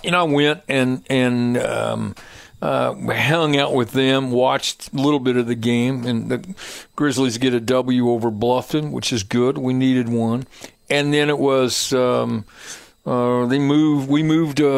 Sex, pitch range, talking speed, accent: male, 125-145 Hz, 180 wpm, American